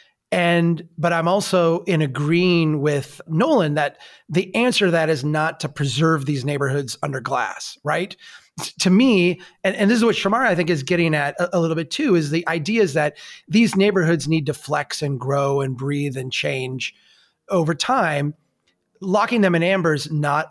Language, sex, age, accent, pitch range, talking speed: English, male, 30-49, American, 145-190 Hz, 185 wpm